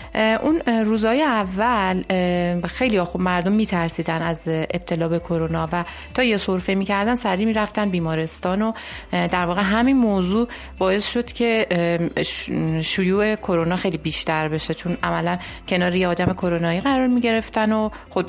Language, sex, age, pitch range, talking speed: Persian, female, 30-49, 170-210 Hz, 140 wpm